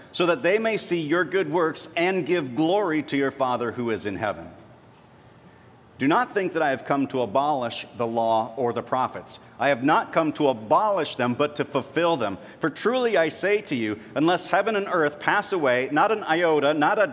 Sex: male